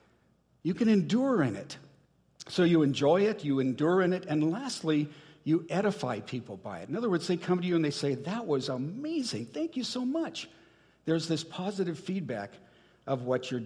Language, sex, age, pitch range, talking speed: English, male, 60-79, 140-190 Hz, 195 wpm